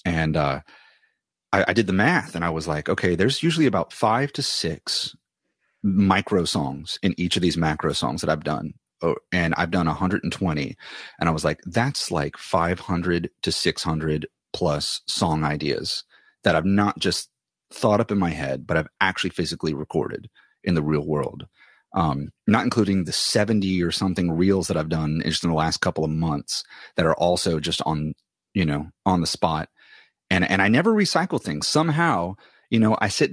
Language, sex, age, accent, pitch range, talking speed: English, male, 30-49, American, 85-110 Hz, 185 wpm